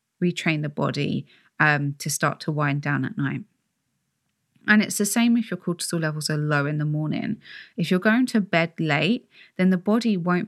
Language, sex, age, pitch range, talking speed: English, female, 20-39, 155-190 Hz, 195 wpm